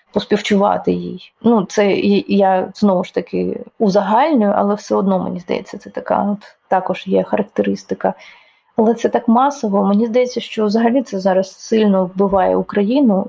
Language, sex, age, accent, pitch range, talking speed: Ukrainian, female, 20-39, native, 195-220 Hz, 145 wpm